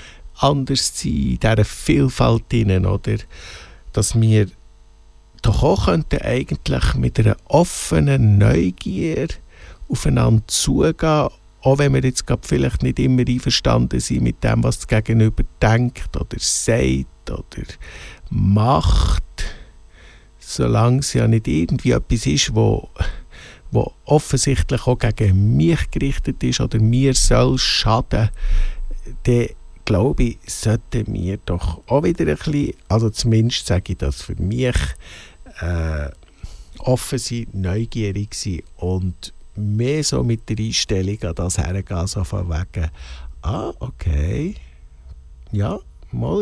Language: German